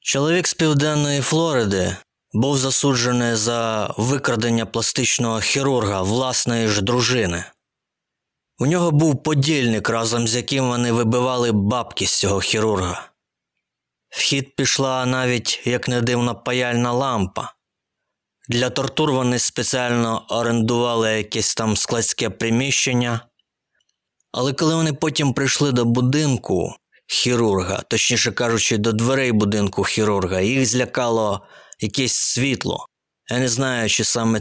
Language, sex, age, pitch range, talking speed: Ukrainian, male, 20-39, 110-130 Hz, 115 wpm